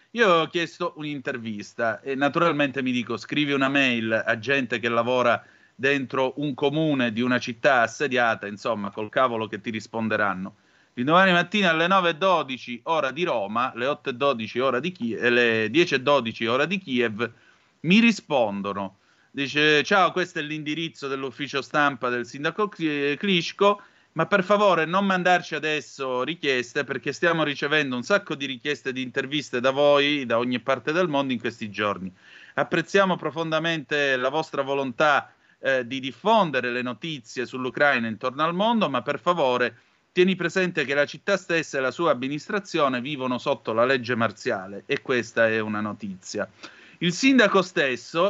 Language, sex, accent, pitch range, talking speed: Italian, male, native, 125-165 Hz, 155 wpm